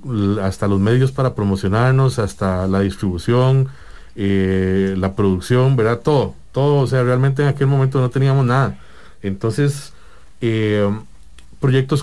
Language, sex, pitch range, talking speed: English, male, 100-130 Hz, 130 wpm